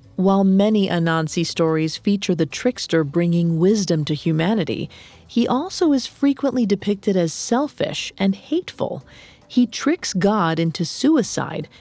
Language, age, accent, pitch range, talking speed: English, 40-59, American, 165-240 Hz, 125 wpm